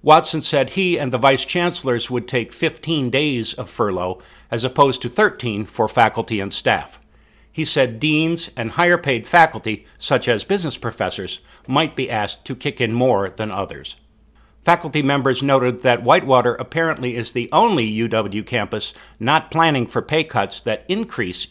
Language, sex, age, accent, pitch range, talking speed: English, male, 50-69, American, 105-140 Hz, 160 wpm